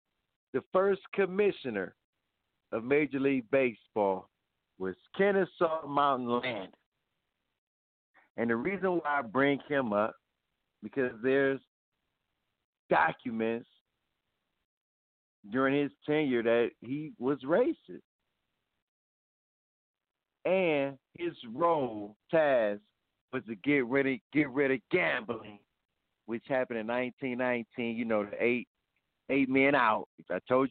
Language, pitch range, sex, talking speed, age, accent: English, 115-155 Hz, male, 105 wpm, 50-69, American